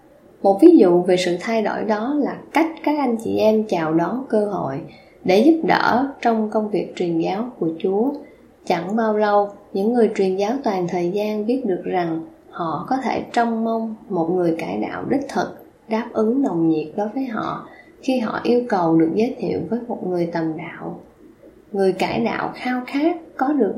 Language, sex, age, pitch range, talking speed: Vietnamese, female, 10-29, 185-245 Hz, 195 wpm